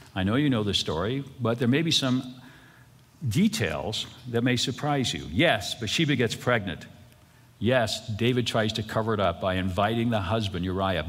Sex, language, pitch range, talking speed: male, English, 110-145 Hz, 175 wpm